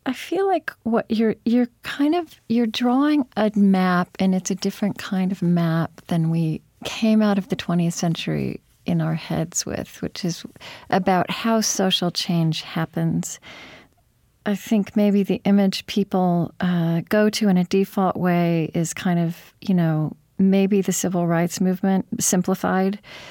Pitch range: 165-205 Hz